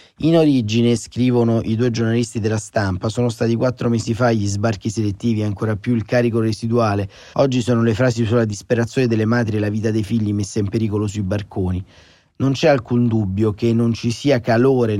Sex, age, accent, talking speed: male, 30-49, native, 195 wpm